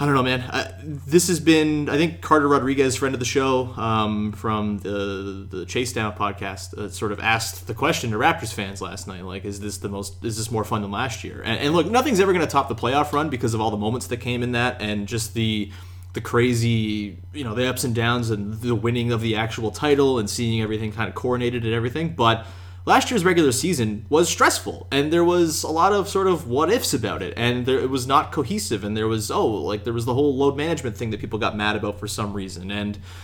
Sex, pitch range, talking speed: male, 105-135 Hz, 245 wpm